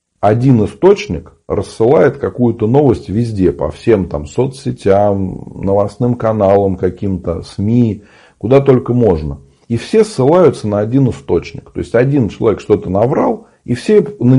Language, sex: Russian, male